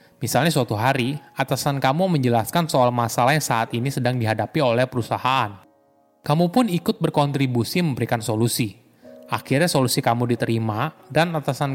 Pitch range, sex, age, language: 120-160 Hz, male, 20-39, Indonesian